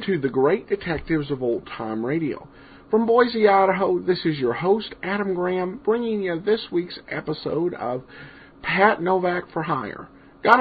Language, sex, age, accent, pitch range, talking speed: English, male, 50-69, American, 150-200 Hz, 160 wpm